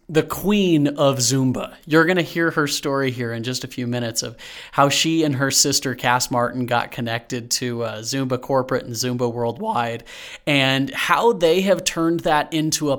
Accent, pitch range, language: American, 135-190 Hz, English